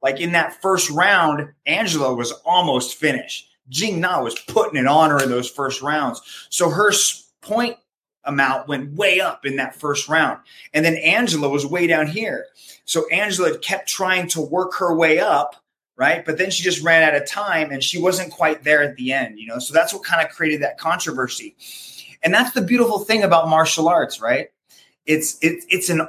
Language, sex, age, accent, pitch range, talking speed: English, male, 30-49, American, 145-185 Hz, 200 wpm